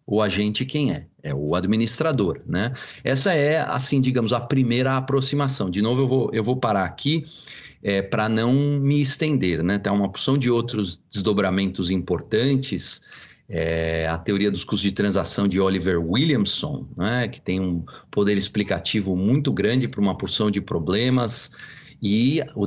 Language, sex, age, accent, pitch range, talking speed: Portuguese, male, 40-59, Brazilian, 100-135 Hz, 155 wpm